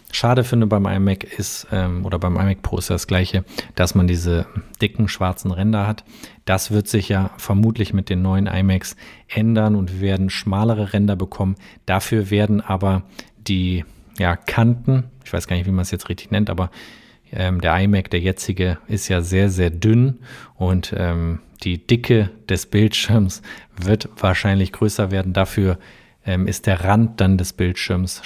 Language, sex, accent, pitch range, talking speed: German, male, German, 95-115 Hz, 165 wpm